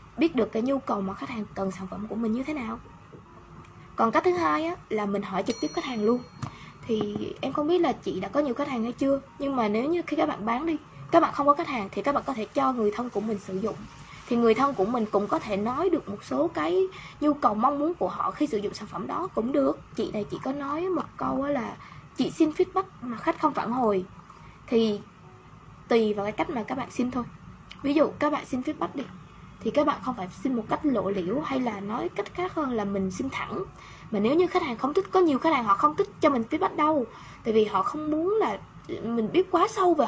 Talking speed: 265 wpm